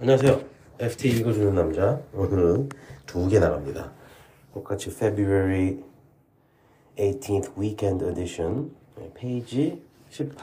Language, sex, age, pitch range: Korean, male, 40-59, 90-130 Hz